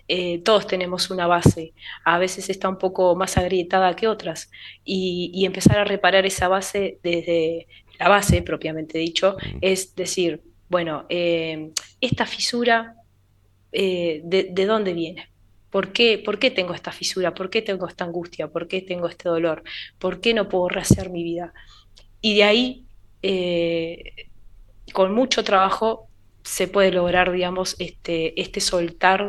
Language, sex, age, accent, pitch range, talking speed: Spanish, female, 20-39, Argentinian, 165-195 Hz, 150 wpm